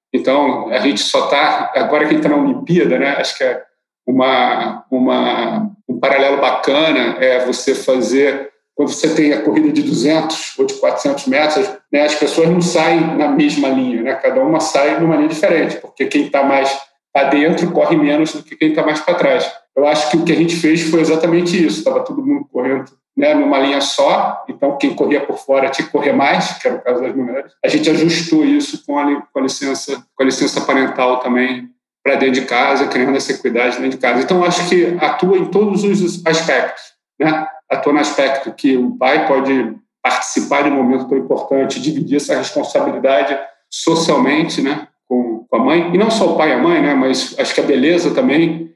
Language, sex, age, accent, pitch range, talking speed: Portuguese, male, 40-59, Brazilian, 135-185 Hz, 200 wpm